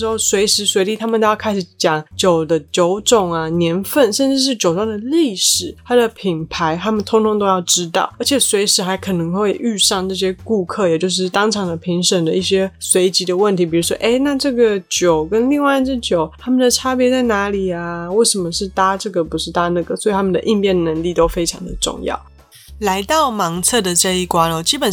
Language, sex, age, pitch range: Chinese, female, 20-39, 175-220 Hz